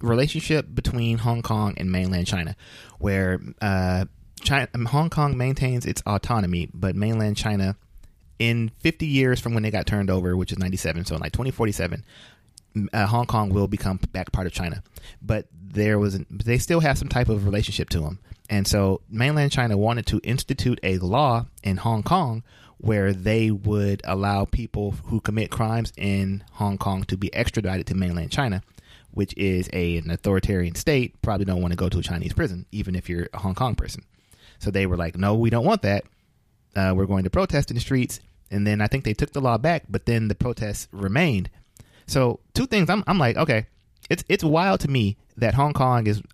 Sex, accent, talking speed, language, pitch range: male, American, 200 wpm, English, 95-120 Hz